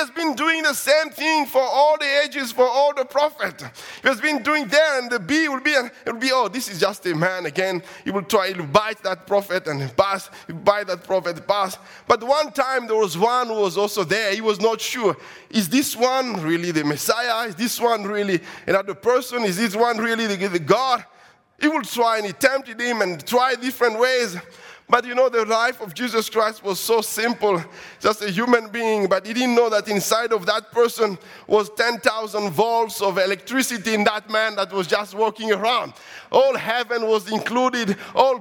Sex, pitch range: male, 195-255 Hz